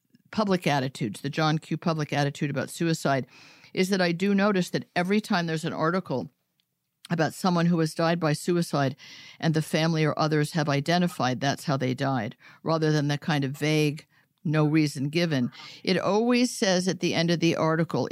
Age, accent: 50-69, American